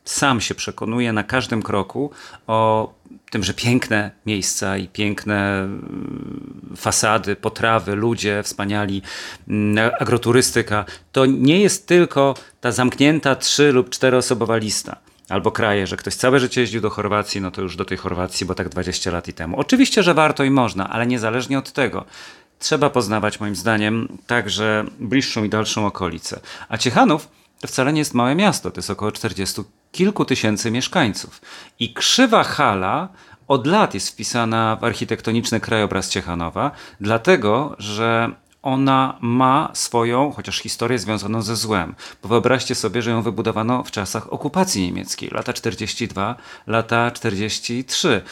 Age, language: 40-59, Polish